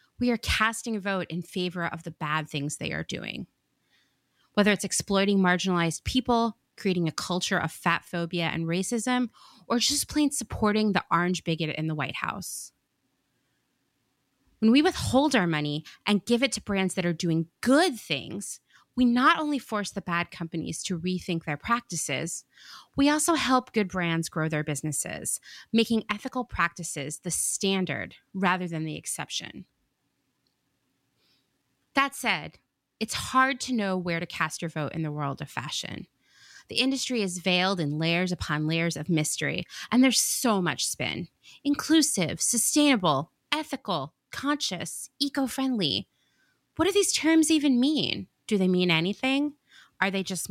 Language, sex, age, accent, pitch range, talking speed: English, female, 20-39, American, 165-240 Hz, 155 wpm